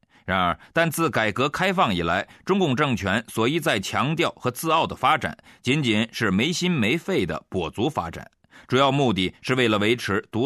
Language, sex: Chinese, male